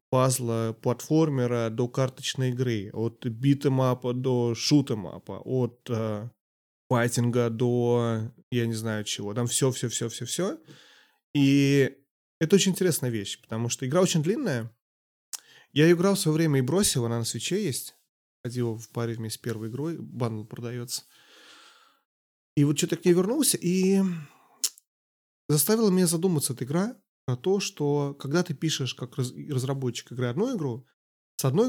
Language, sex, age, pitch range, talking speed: Russian, male, 20-39, 120-150 Hz, 135 wpm